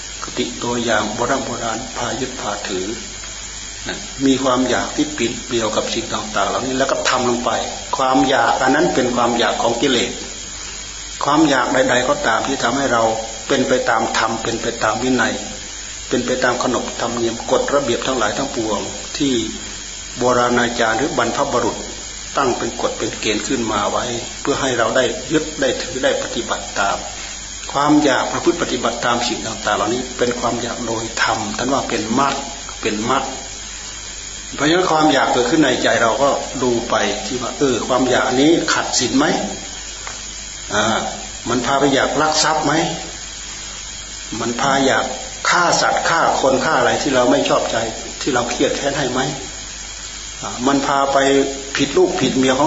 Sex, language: male, Thai